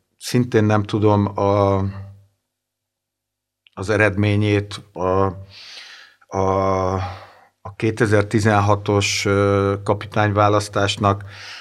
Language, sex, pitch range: Hungarian, male, 100-110 Hz